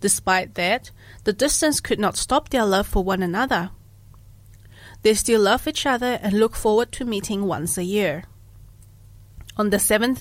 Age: 30-49